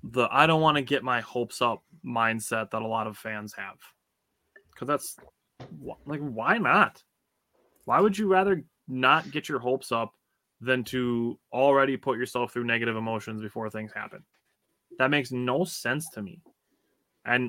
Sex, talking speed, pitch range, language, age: male, 165 wpm, 110-135 Hz, English, 20-39